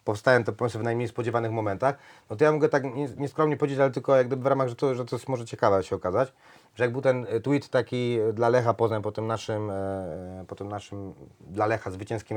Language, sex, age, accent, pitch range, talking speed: Polish, male, 30-49, native, 95-130 Hz, 225 wpm